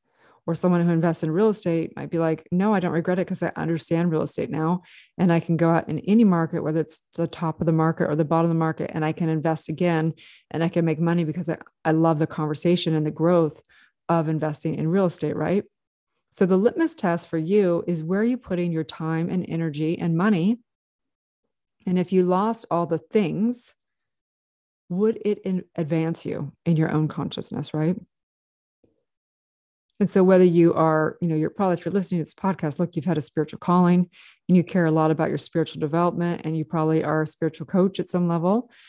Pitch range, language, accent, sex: 160-185 Hz, English, American, female